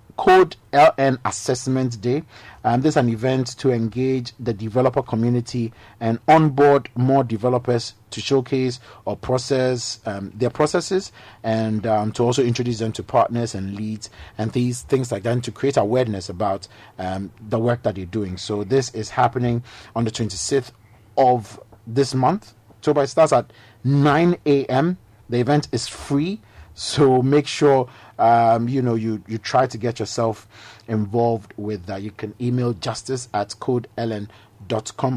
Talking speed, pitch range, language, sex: 160 wpm, 110-130 Hz, English, male